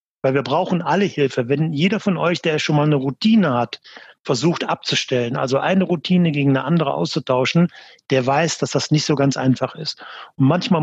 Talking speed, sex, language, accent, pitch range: 195 wpm, male, German, German, 140-180 Hz